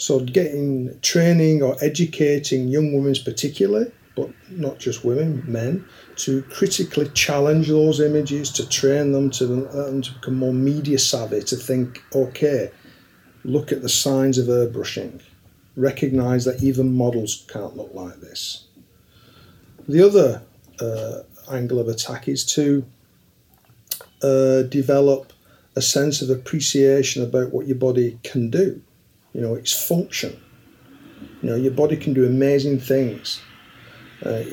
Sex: male